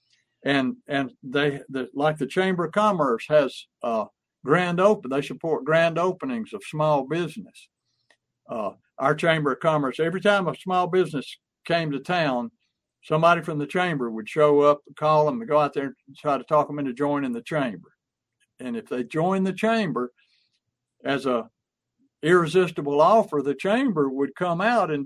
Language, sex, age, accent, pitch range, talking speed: English, male, 60-79, American, 145-195 Hz, 165 wpm